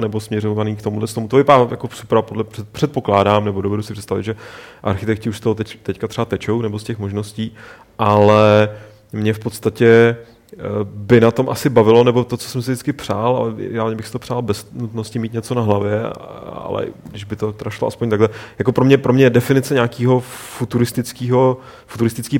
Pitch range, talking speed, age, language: 105-120 Hz, 190 wpm, 30-49, Czech